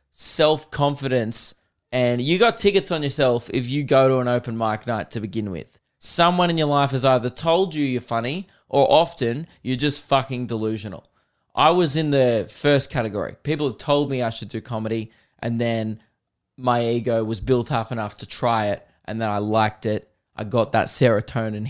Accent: Australian